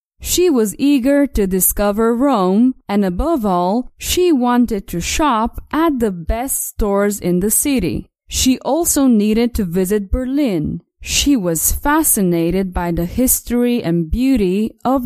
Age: 20-39